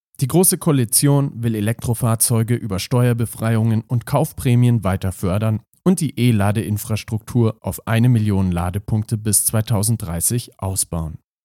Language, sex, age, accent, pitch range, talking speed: German, male, 40-59, German, 105-140 Hz, 110 wpm